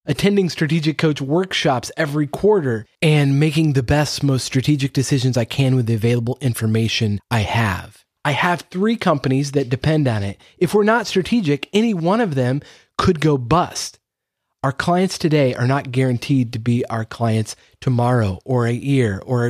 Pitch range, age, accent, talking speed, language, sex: 125-160 Hz, 30-49, American, 170 wpm, English, male